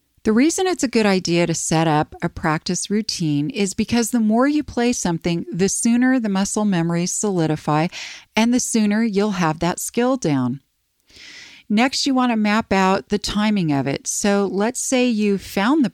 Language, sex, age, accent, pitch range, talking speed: English, female, 40-59, American, 165-215 Hz, 185 wpm